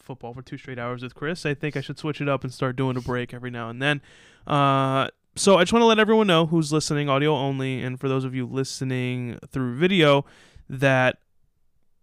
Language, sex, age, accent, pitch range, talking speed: English, male, 20-39, American, 125-155 Hz, 225 wpm